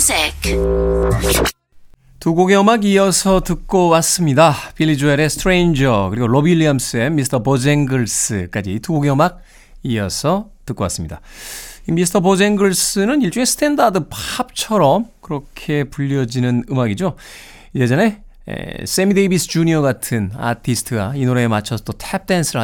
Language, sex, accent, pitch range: Korean, male, native, 115-170 Hz